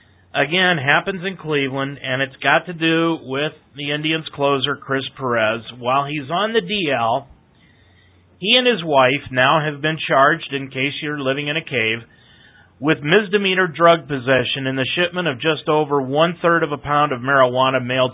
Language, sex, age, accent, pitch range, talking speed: English, male, 40-59, American, 130-170 Hz, 170 wpm